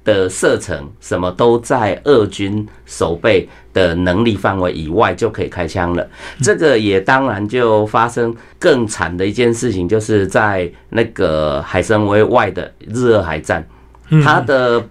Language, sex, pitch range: Chinese, male, 95-120 Hz